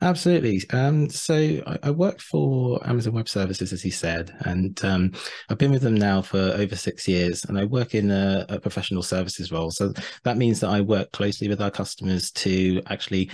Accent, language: British, English